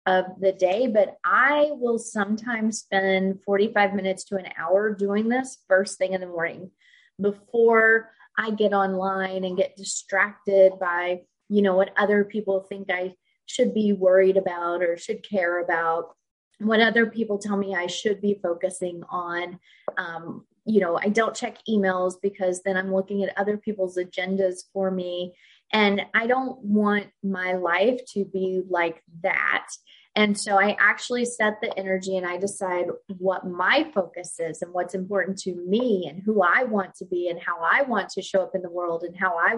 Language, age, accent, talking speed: English, 20-39, American, 180 wpm